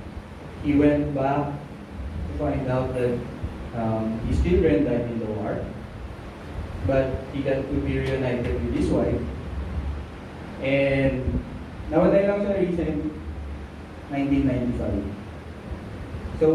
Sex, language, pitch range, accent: male, English, 85-135 Hz, Filipino